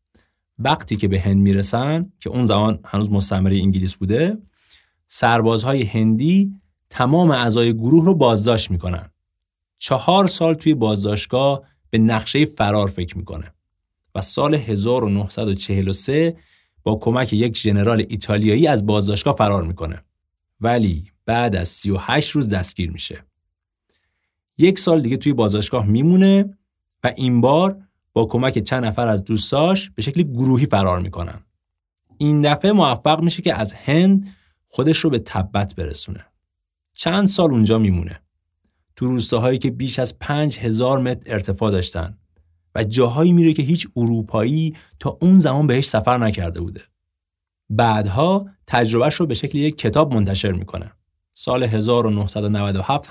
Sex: male